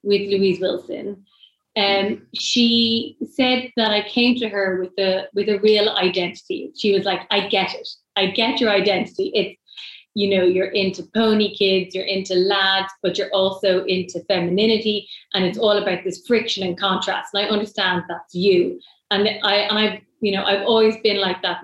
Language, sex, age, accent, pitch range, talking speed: English, female, 30-49, Irish, 190-230 Hz, 180 wpm